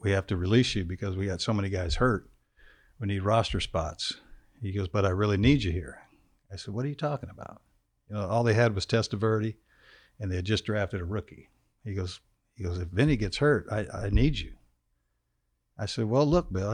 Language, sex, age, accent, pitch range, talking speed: English, male, 60-79, American, 95-115 Hz, 220 wpm